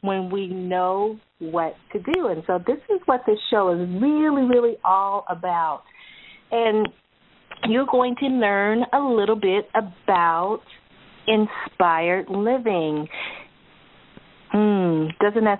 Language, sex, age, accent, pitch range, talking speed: English, female, 40-59, American, 185-230 Hz, 125 wpm